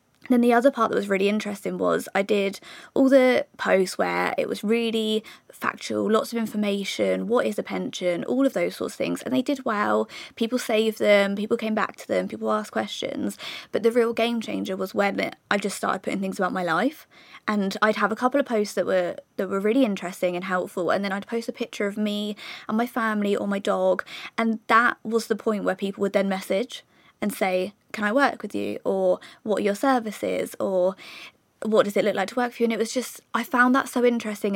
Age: 20-39